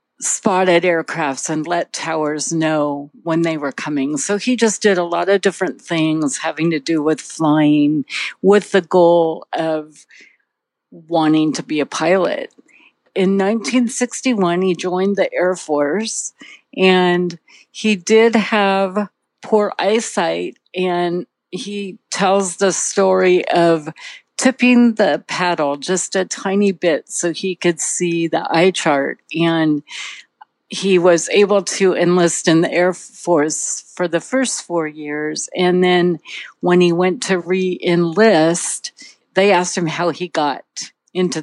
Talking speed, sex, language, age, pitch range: 140 wpm, female, English, 50-69, 160-195 Hz